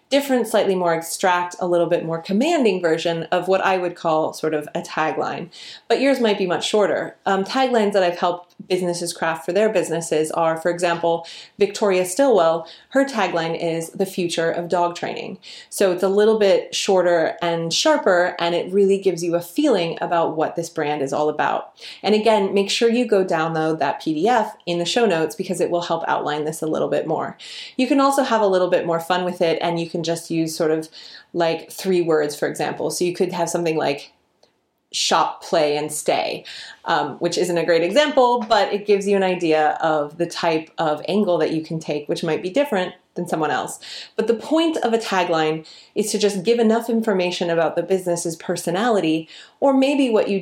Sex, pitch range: female, 165-210 Hz